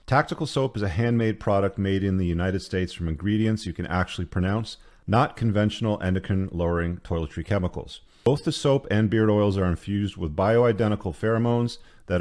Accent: American